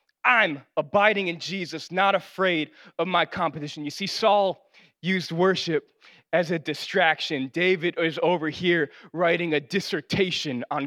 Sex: male